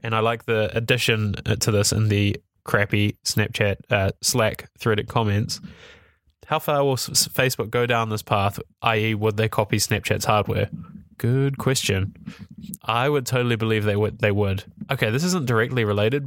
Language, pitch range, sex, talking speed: English, 105-125 Hz, male, 155 wpm